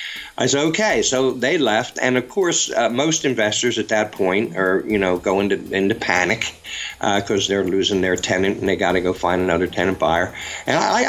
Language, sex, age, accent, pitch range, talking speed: English, male, 50-69, American, 100-115 Hz, 205 wpm